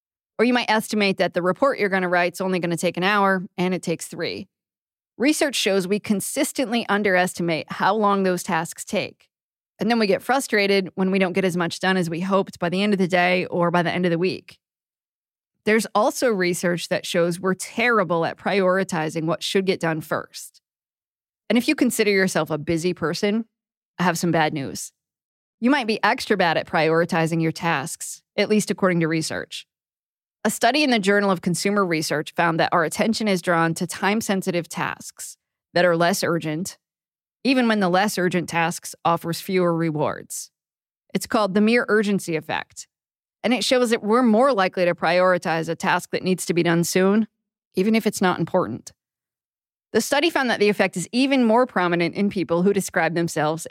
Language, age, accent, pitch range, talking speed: English, 20-39, American, 170-210 Hz, 195 wpm